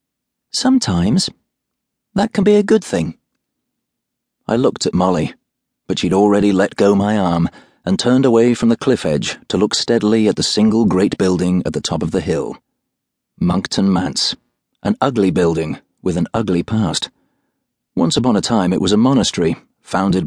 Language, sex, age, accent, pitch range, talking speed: English, male, 40-59, British, 90-120 Hz, 170 wpm